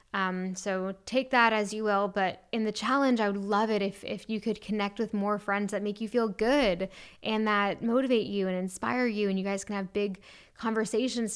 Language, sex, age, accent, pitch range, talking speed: English, female, 10-29, American, 195-225 Hz, 220 wpm